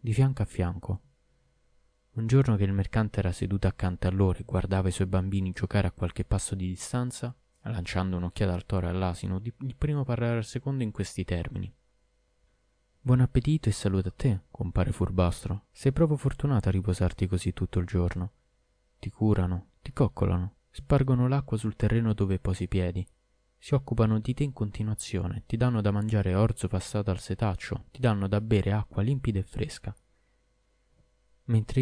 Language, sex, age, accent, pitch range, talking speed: Italian, male, 20-39, native, 95-120 Hz, 170 wpm